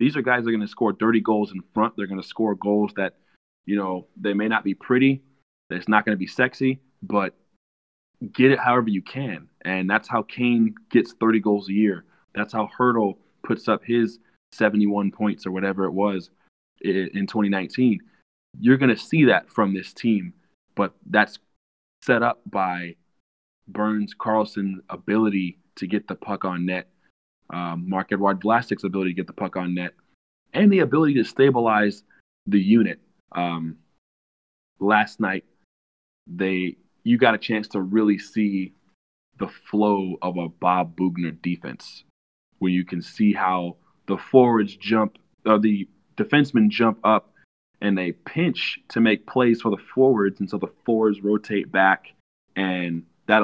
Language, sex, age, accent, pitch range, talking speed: English, male, 20-39, American, 95-110 Hz, 165 wpm